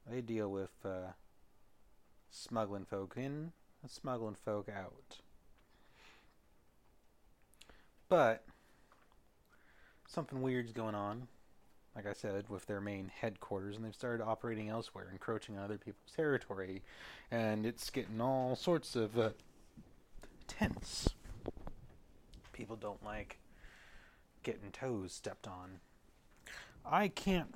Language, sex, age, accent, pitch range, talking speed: English, male, 30-49, American, 95-120 Hz, 110 wpm